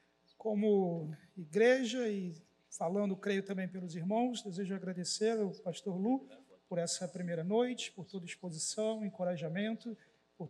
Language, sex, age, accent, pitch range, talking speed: Portuguese, male, 40-59, Brazilian, 170-215 Hz, 125 wpm